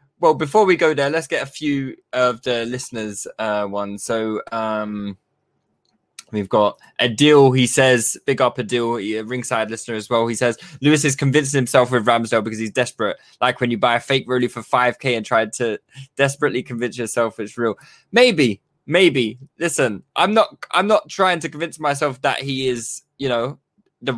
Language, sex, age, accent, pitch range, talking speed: English, male, 20-39, British, 115-145 Hz, 190 wpm